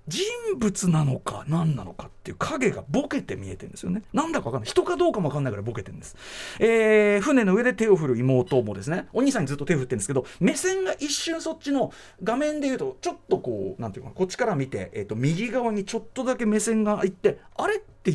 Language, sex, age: Japanese, male, 40-59